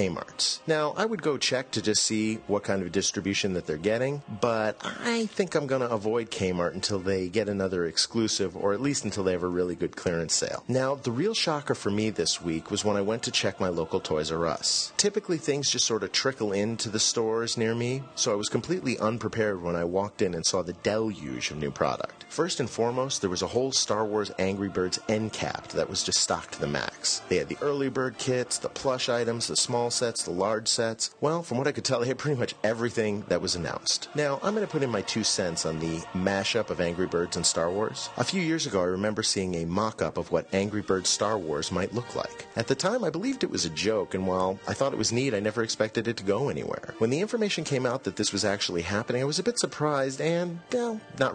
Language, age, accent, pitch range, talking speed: English, 30-49, American, 100-135 Hz, 245 wpm